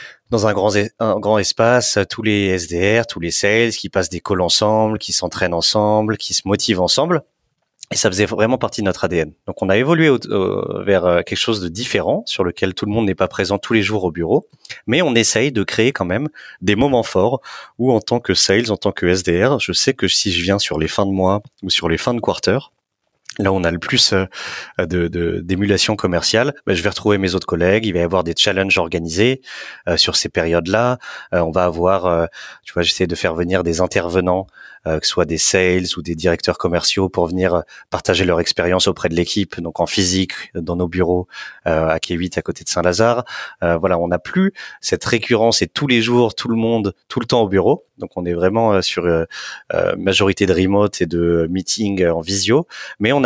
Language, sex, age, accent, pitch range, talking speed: French, male, 30-49, French, 90-110 Hz, 220 wpm